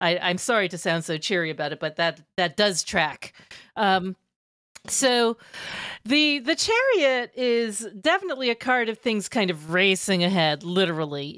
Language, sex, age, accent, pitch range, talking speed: English, female, 40-59, American, 170-220 Hz, 160 wpm